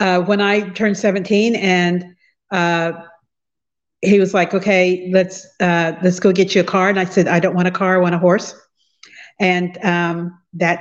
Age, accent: 50-69, American